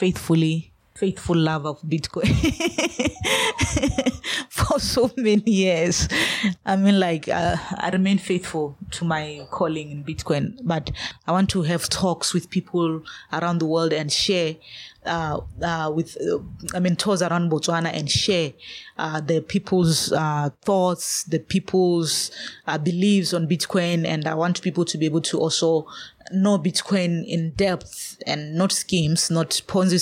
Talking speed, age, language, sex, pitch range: 145 wpm, 20-39, English, female, 155-180 Hz